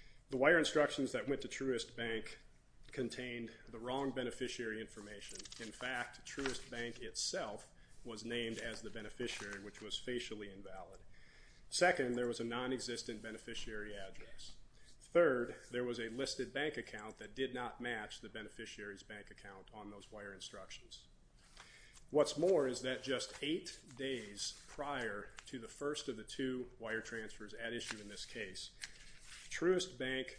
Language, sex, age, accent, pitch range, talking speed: English, male, 40-59, American, 110-130 Hz, 150 wpm